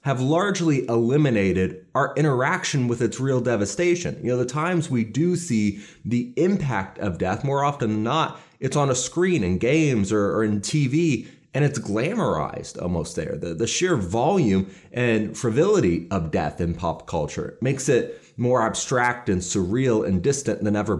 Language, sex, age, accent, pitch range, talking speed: English, male, 30-49, American, 105-155 Hz, 170 wpm